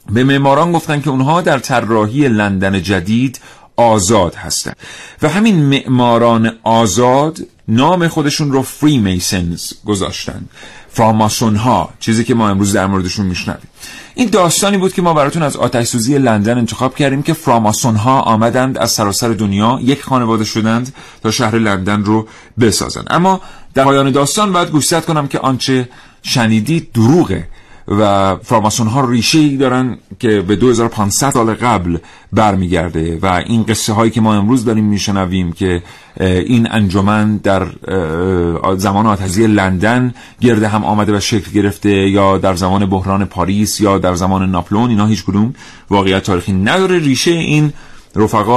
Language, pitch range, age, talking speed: Persian, 100-130 Hz, 40-59, 145 wpm